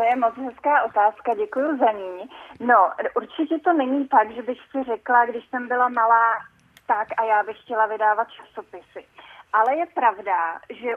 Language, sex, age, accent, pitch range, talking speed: Czech, female, 30-49, native, 215-255 Hz, 175 wpm